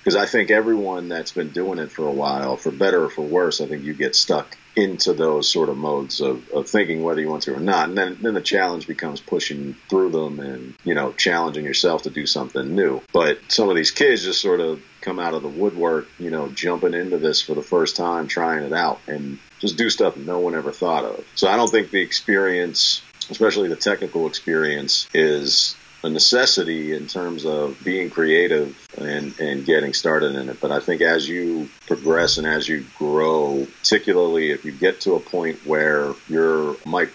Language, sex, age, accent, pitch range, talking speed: English, male, 40-59, American, 75-105 Hz, 210 wpm